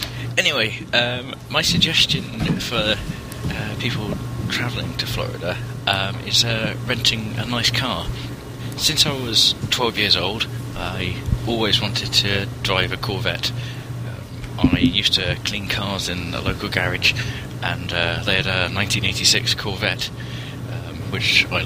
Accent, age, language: British, 20-39, English